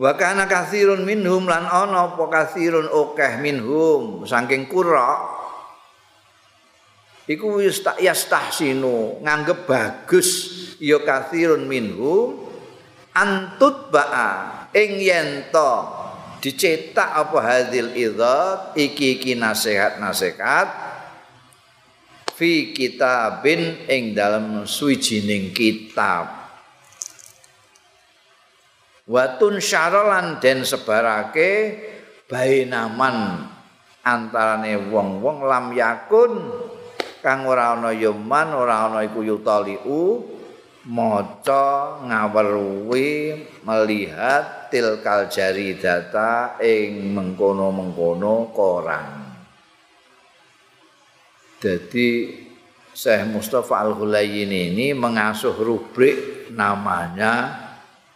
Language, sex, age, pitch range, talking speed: Indonesian, male, 50-69, 110-180 Hz, 65 wpm